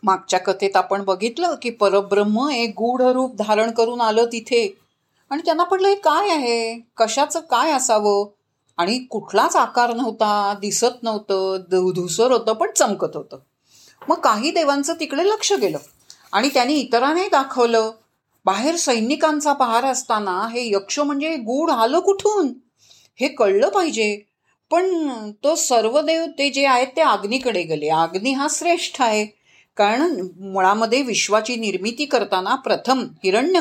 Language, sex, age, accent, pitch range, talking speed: Marathi, female, 40-59, native, 205-295 Hz, 130 wpm